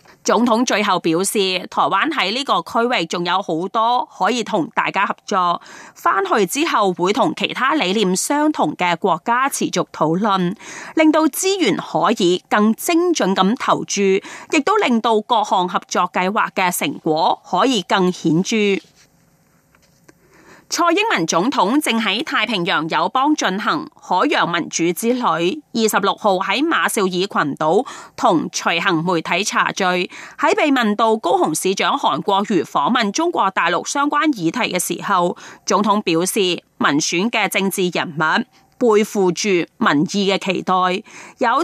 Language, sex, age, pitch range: Chinese, female, 30-49, 180-260 Hz